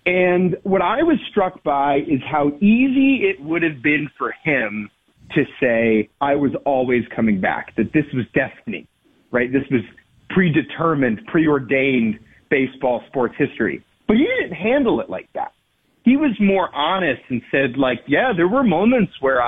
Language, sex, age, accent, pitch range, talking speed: English, male, 40-59, American, 135-185 Hz, 165 wpm